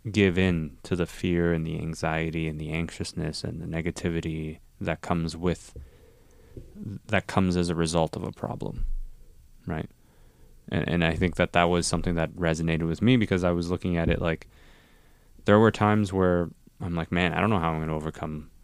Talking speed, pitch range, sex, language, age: 195 wpm, 80-100 Hz, male, English, 20-39